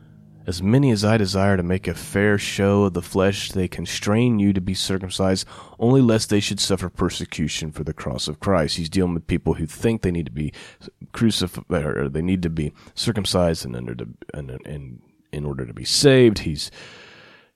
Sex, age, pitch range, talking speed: male, 30-49, 85-110 Hz, 200 wpm